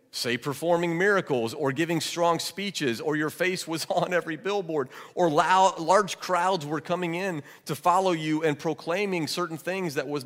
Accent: American